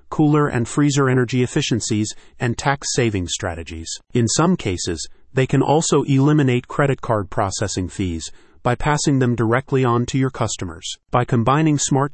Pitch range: 110-135 Hz